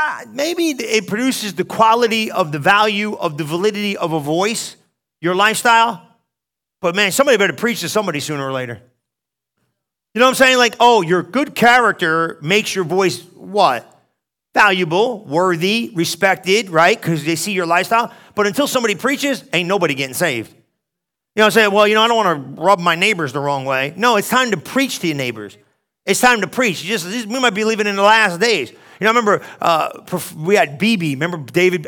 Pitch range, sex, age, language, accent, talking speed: 170-225 Hz, male, 40-59, English, American, 200 wpm